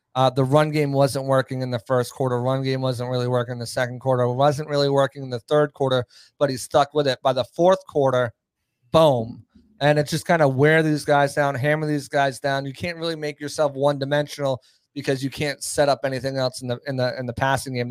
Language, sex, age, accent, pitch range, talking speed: English, male, 30-49, American, 130-150 Hz, 240 wpm